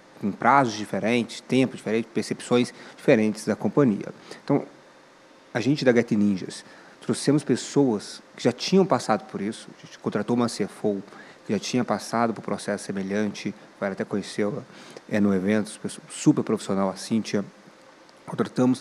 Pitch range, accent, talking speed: 105-125 Hz, Brazilian, 135 wpm